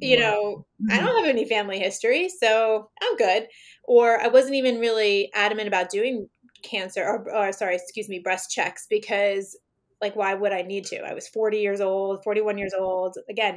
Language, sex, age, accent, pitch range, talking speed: English, female, 20-39, American, 195-230 Hz, 190 wpm